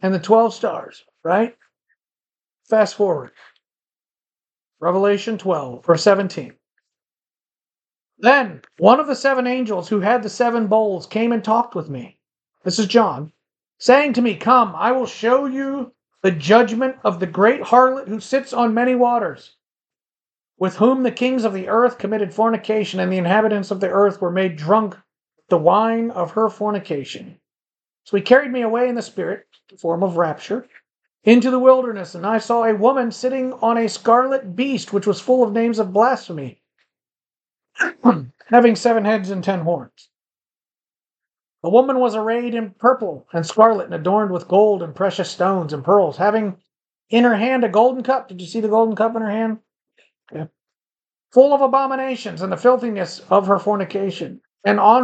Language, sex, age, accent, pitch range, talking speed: English, male, 40-59, American, 190-240 Hz, 170 wpm